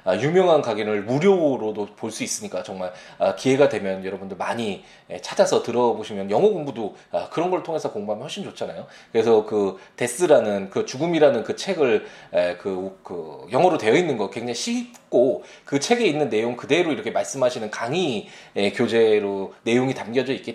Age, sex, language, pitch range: 20-39, male, Korean, 100-160 Hz